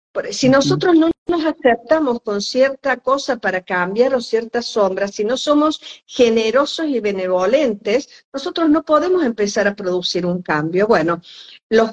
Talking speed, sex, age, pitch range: 145 wpm, female, 50-69, 200-275 Hz